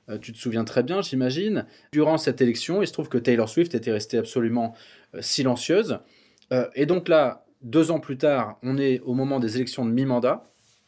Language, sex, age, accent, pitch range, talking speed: French, male, 20-39, French, 120-150 Hz, 190 wpm